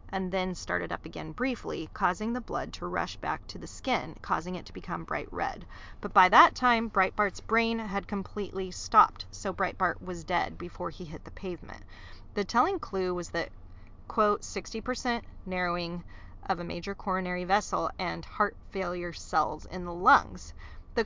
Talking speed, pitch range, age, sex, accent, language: 170 wpm, 180-220 Hz, 30-49, female, American, English